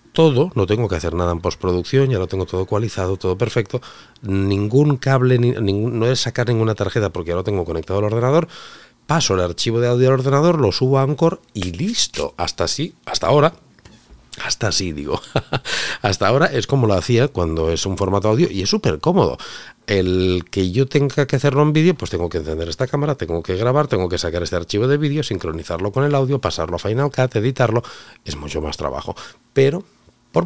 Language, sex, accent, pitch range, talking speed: Spanish, male, Spanish, 90-135 Hz, 205 wpm